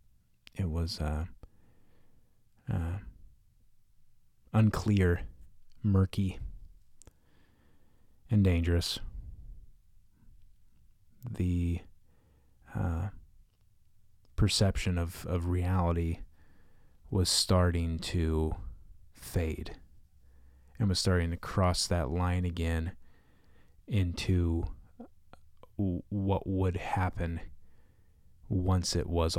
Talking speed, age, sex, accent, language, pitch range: 65 wpm, 30-49, male, American, English, 75-95 Hz